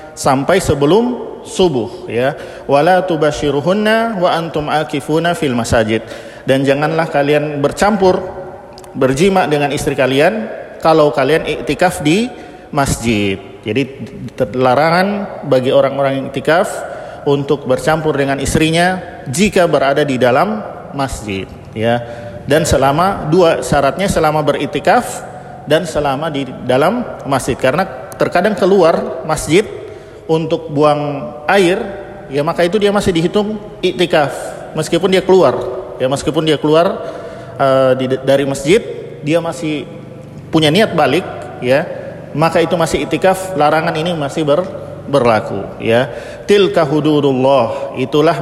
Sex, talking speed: male, 115 wpm